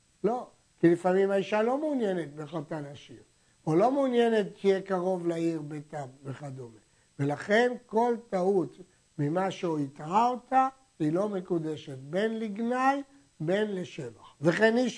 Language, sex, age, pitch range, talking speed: Hebrew, male, 60-79, 160-225 Hz, 130 wpm